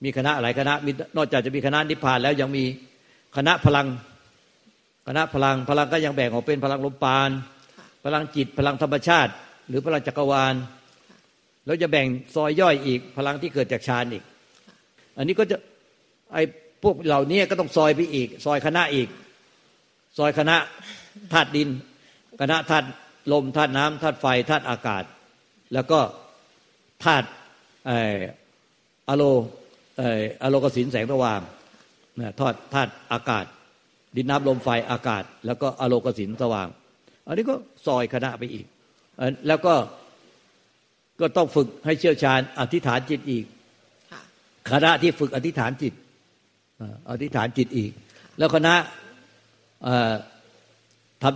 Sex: male